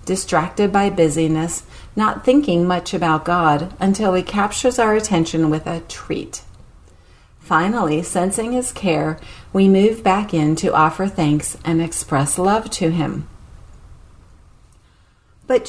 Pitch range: 155-205 Hz